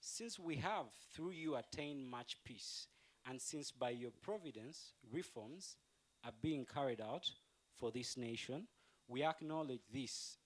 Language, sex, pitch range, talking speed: English, male, 115-145 Hz, 140 wpm